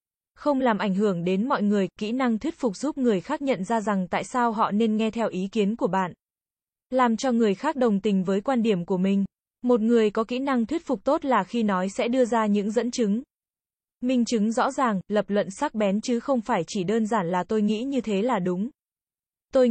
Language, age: Vietnamese, 20-39